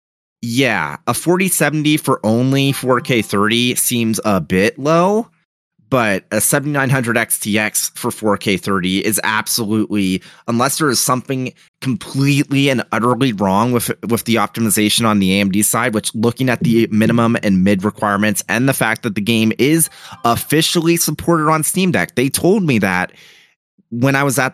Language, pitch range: English, 105-140 Hz